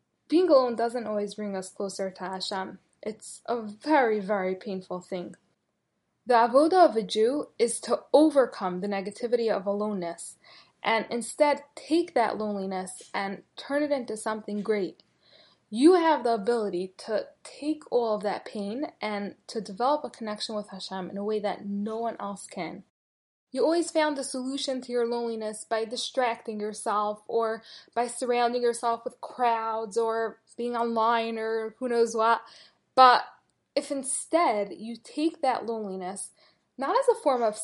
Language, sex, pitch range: English, female, 205-250 Hz